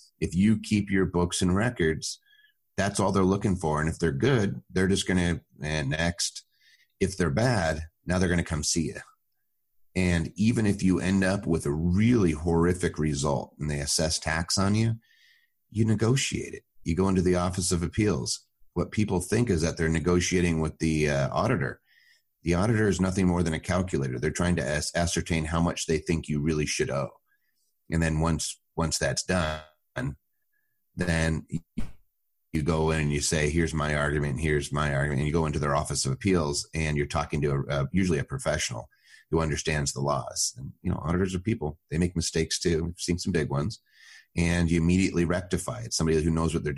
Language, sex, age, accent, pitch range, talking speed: English, male, 30-49, American, 75-95 Hz, 200 wpm